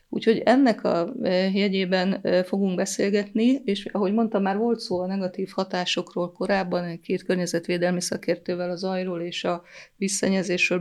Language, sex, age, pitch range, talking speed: Hungarian, female, 30-49, 180-205 Hz, 135 wpm